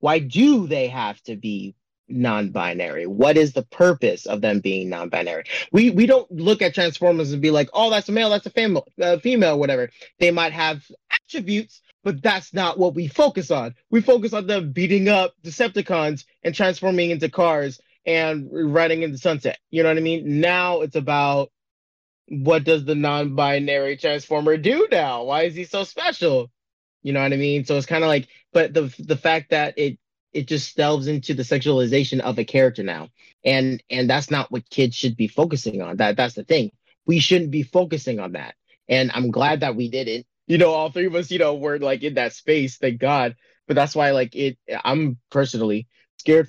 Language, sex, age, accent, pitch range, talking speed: English, male, 30-49, American, 130-180 Hz, 195 wpm